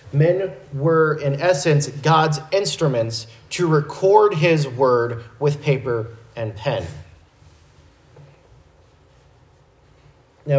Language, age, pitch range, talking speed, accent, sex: English, 30-49, 135-160 Hz, 85 wpm, American, male